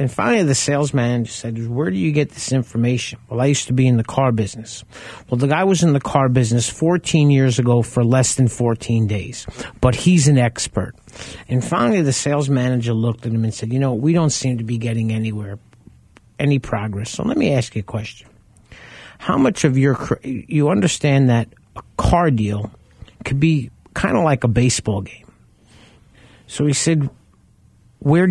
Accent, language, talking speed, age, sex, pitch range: American, English, 195 wpm, 50-69, male, 115-140 Hz